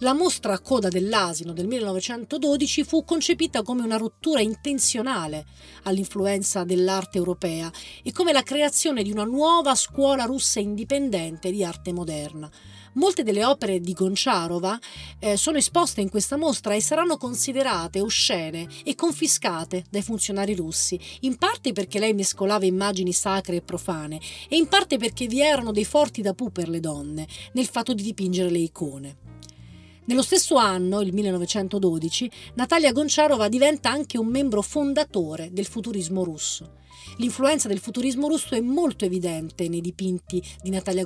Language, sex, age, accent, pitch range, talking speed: Italian, female, 40-59, native, 180-265 Hz, 150 wpm